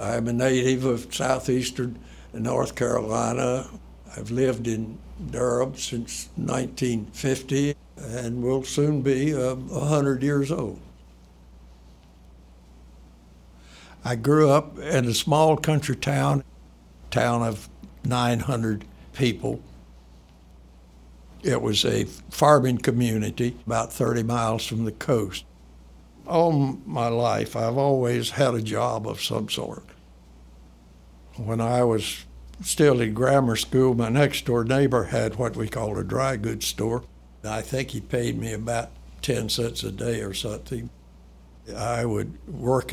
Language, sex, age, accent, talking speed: English, male, 60-79, American, 125 wpm